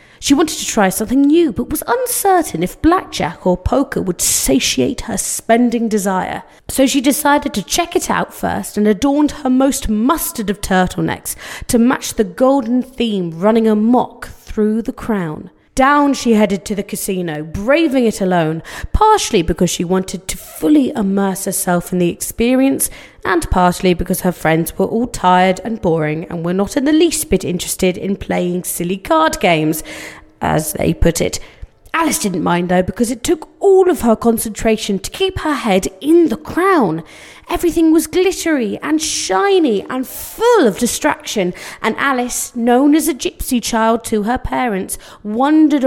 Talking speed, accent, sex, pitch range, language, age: 170 wpm, British, female, 190-285 Hz, English, 30-49